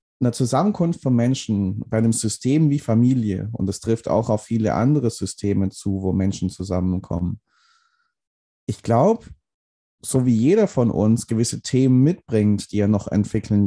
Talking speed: 155 wpm